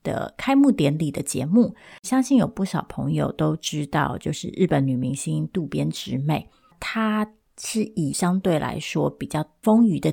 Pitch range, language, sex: 150-195 Hz, Chinese, female